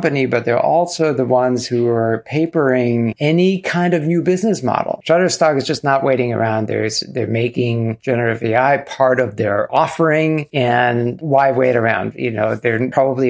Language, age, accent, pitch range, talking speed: English, 50-69, American, 120-160 Hz, 160 wpm